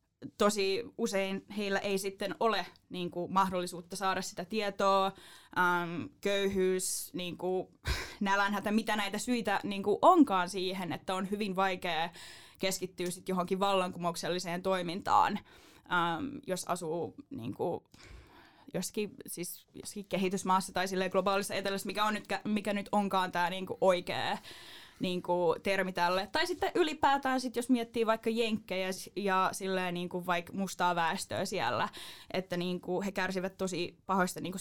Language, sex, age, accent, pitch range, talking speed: Finnish, female, 10-29, native, 180-200 Hz, 140 wpm